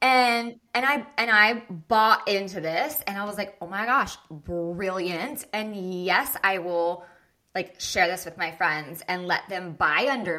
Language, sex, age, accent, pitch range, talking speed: English, female, 20-39, American, 170-210 Hz, 180 wpm